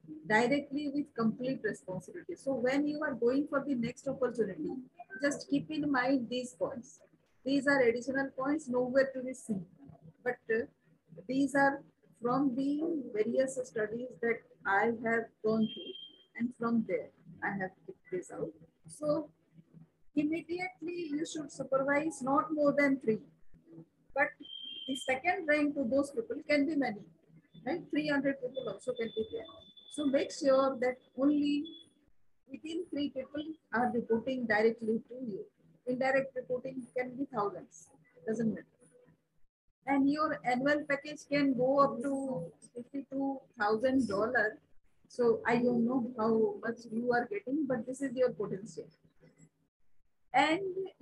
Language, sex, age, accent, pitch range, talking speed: English, female, 50-69, Indian, 230-285 Hz, 140 wpm